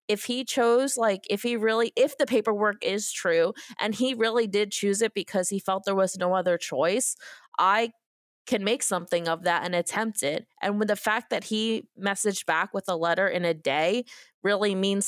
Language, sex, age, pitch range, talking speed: English, female, 20-39, 175-210 Hz, 205 wpm